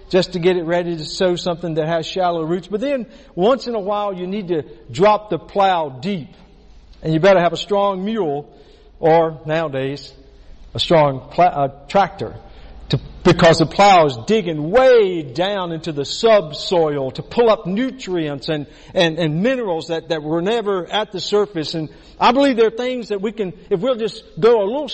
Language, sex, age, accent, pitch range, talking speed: English, male, 50-69, American, 170-230 Hz, 190 wpm